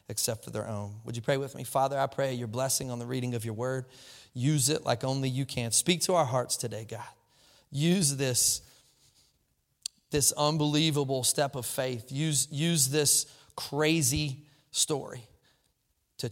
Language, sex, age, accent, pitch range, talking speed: English, male, 30-49, American, 135-220 Hz, 165 wpm